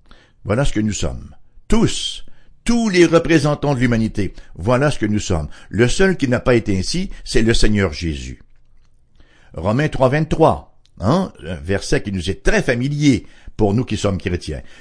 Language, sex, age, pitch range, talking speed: English, male, 60-79, 105-145 Hz, 175 wpm